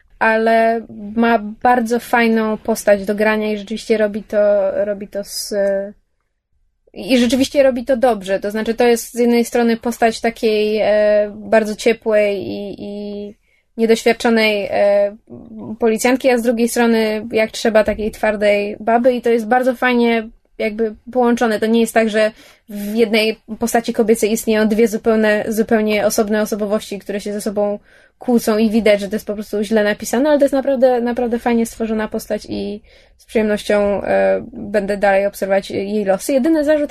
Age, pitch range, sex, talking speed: 20-39, 215-245 Hz, female, 160 wpm